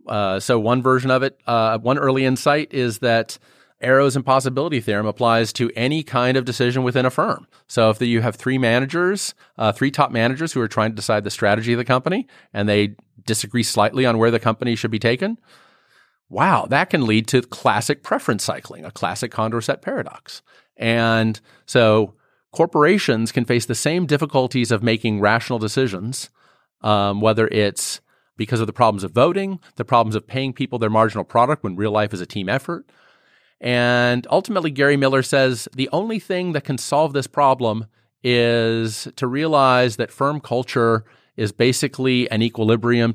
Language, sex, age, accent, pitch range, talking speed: English, male, 40-59, American, 110-135 Hz, 175 wpm